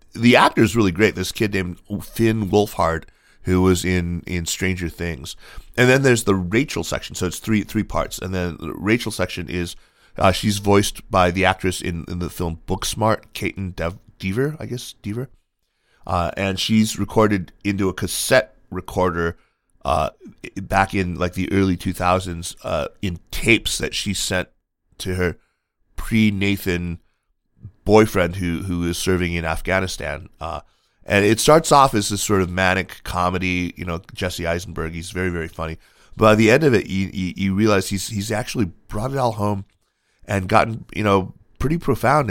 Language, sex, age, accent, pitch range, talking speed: English, male, 30-49, American, 90-110 Hz, 175 wpm